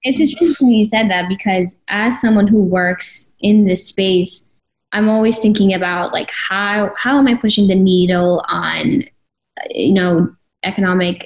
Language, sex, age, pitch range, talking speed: English, female, 10-29, 180-210 Hz, 155 wpm